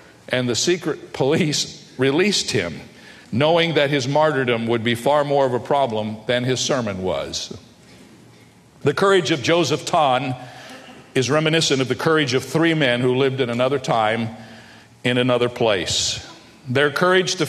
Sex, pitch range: male, 125-150 Hz